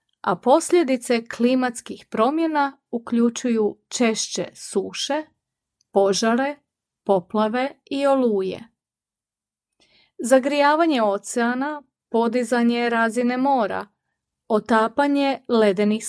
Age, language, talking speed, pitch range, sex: 30-49, Croatian, 65 wpm, 215-275 Hz, female